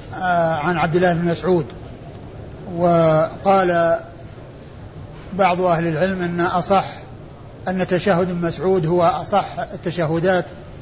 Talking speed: 90 wpm